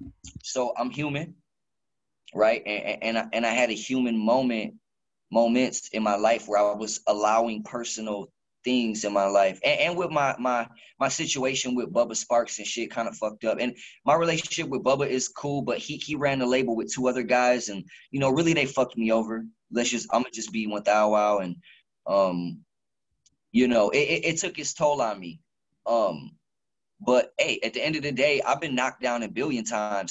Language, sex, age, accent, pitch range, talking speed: English, male, 20-39, American, 115-150 Hz, 205 wpm